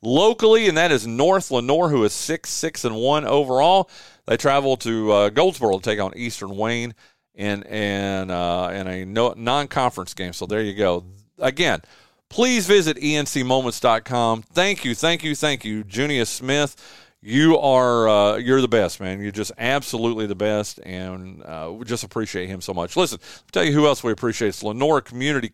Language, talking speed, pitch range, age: English, 180 wpm, 115-165 Hz, 40-59